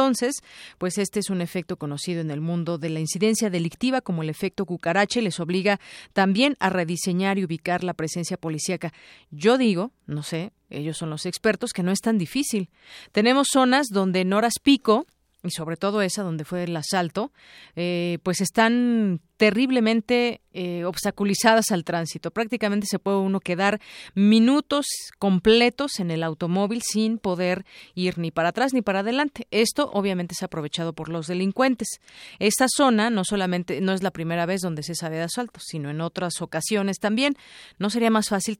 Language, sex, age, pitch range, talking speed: Spanish, female, 40-59, 170-215 Hz, 175 wpm